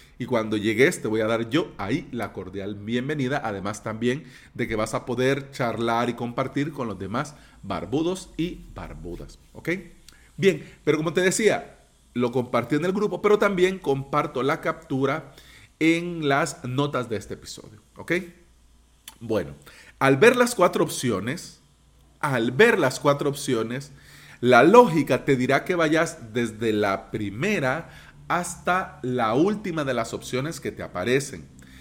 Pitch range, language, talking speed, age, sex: 115-170 Hz, Spanish, 150 wpm, 40-59, male